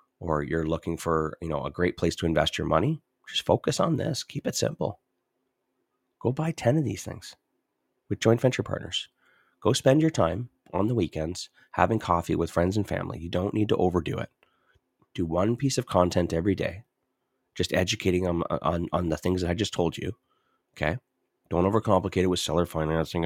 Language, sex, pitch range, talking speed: English, male, 80-100 Hz, 195 wpm